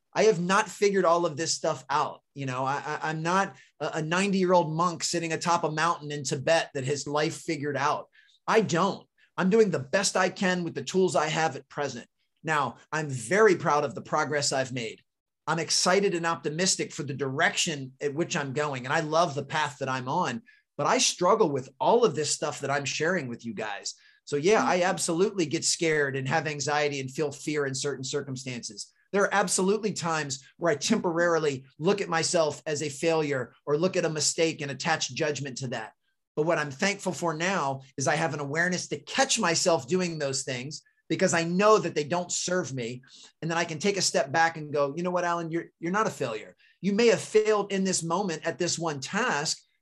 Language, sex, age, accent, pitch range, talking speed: English, male, 30-49, American, 145-185 Hz, 215 wpm